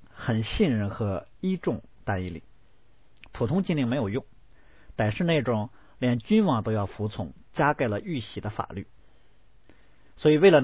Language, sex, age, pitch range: Chinese, male, 50-69, 100-135 Hz